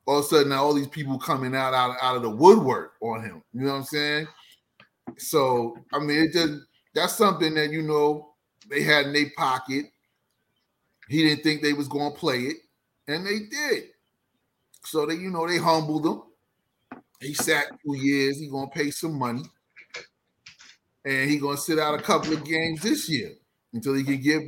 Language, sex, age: English, male, 30-49